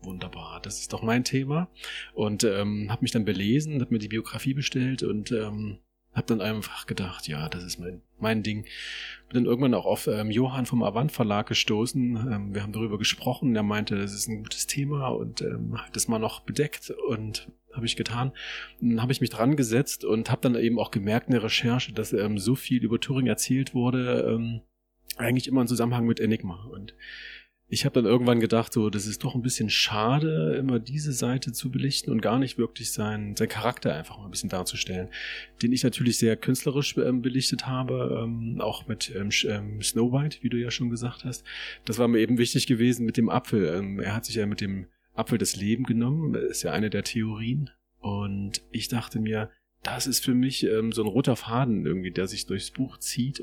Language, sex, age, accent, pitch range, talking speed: German, male, 30-49, German, 105-125 Hz, 205 wpm